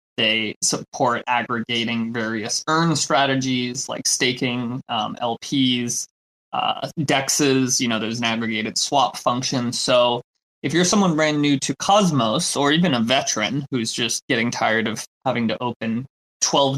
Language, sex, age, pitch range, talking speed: English, male, 20-39, 115-140 Hz, 145 wpm